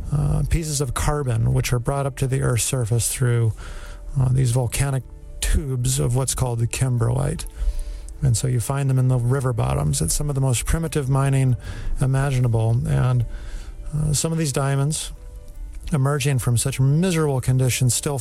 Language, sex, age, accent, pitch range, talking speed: English, male, 40-59, American, 120-145 Hz, 170 wpm